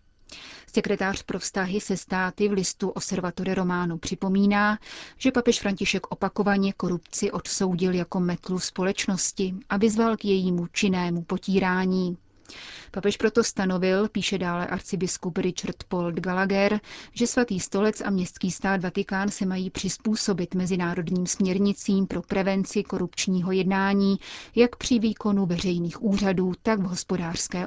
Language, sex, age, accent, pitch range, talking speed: Czech, female, 30-49, native, 180-205 Hz, 125 wpm